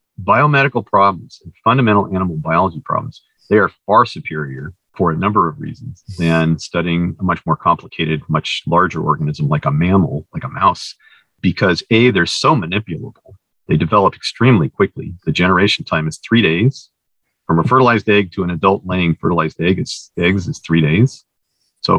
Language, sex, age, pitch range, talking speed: English, male, 40-59, 80-105 Hz, 165 wpm